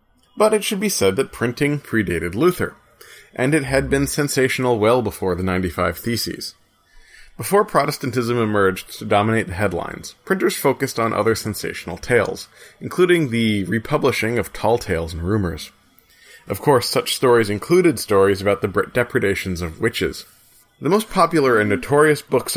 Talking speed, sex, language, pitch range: 150 wpm, male, English, 100-140 Hz